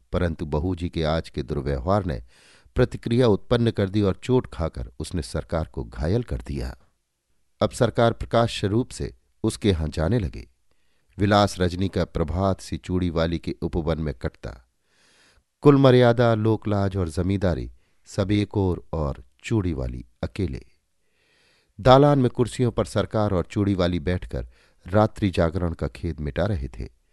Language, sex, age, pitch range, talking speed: Hindi, male, 50-69, 80-110 Hz, 150 wpm